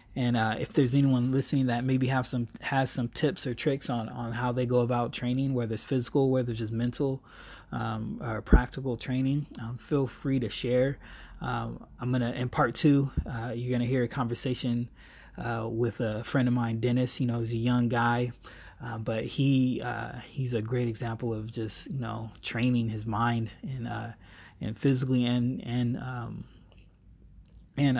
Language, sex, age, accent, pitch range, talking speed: English, male, 20-39, American, 115-130 Hz, 190 wpm